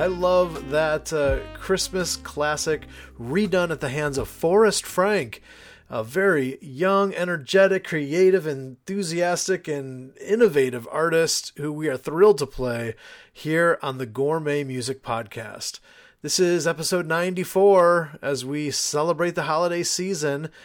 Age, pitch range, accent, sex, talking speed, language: 30-49, 145-180 Hz, American, male, 130 wpm, English